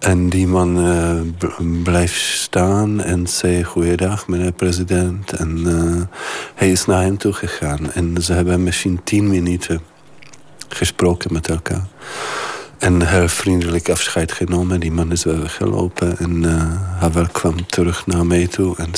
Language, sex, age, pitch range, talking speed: Dutch, male, 50-69, 80-90 Hz, 155 wpm